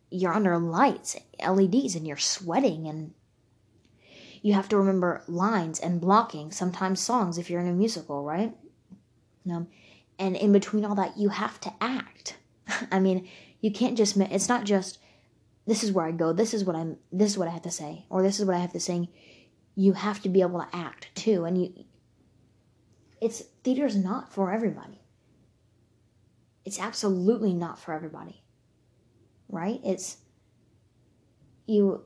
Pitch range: 150-210 Hz